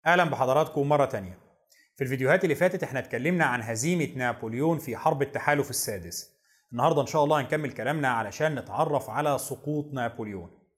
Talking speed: 155 wpm